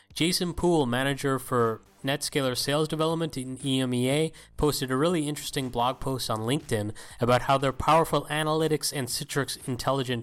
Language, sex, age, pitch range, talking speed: English, male, 30-49, 125-150 Hz, 145 wpm